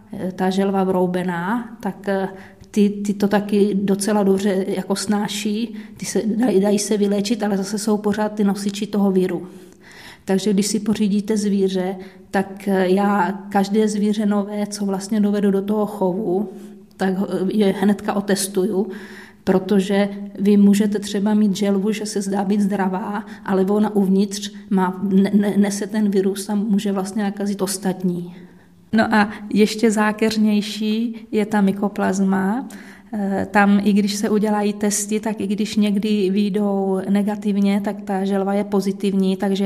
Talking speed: 145 wpm